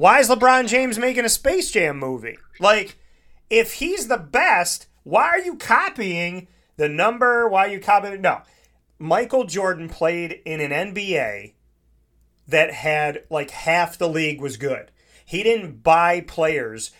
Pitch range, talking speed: 150-195 Hz, 155 wpm